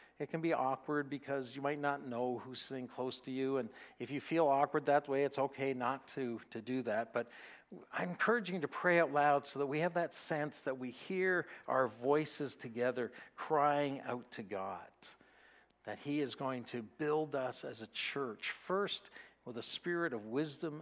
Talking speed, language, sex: 195 wpm, English, male